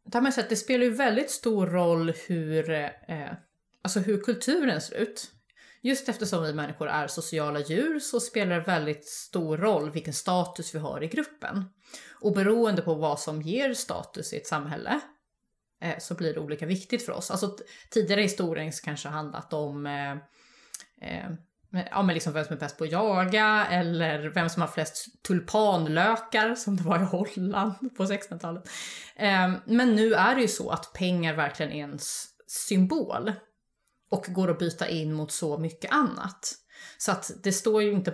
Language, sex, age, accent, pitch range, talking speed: Swedish, female, 30-49, native, 160-215 Hz, 165 wpm